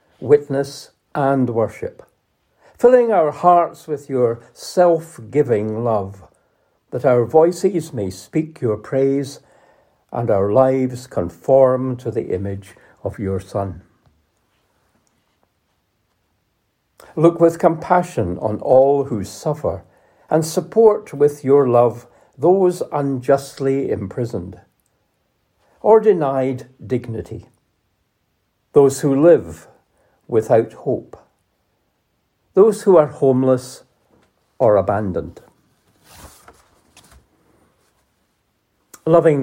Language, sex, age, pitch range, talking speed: English, male, 60-79, 110-160 Hz, 85 wpm